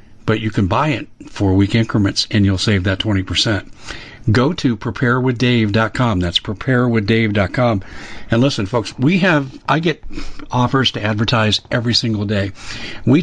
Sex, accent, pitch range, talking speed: male, American, 105-130 Hz, 145 wpm